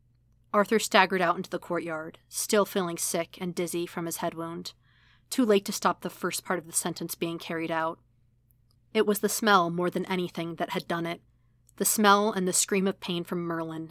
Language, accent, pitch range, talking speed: English, American, 125-195 Hz, 205 wpm